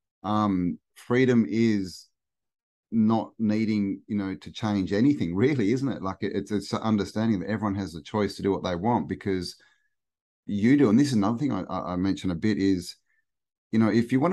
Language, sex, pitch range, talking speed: English, male, 95-115 Hz, 195 wpm